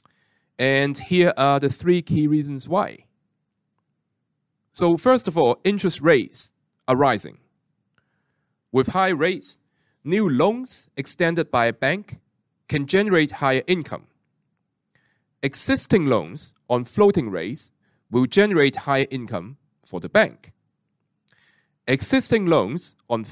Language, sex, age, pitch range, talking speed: English, male, 30-49, 130-175 Hz, 115 wpm